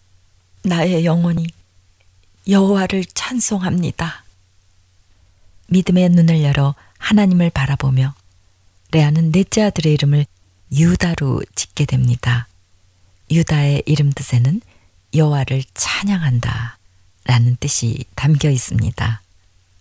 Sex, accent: female, native